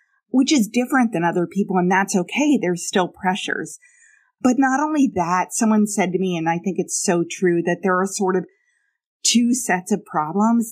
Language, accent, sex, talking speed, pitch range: English, American, female, 195 wpm, 175-220 Hz